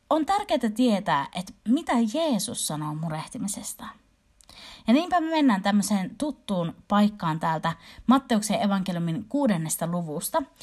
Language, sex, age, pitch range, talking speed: Finnish, female, 30-49, 175-245 Hz, 115 wpm